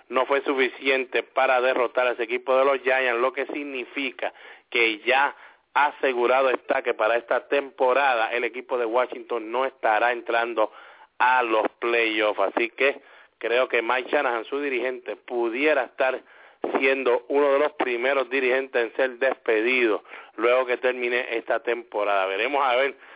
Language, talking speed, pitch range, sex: English, 155 wpm, 120-145 Hz, male